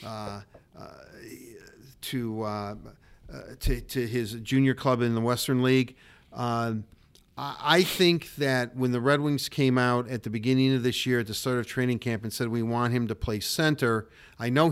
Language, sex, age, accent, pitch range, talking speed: English, male, 50-69, American, 120-150 Hz, 195 wpm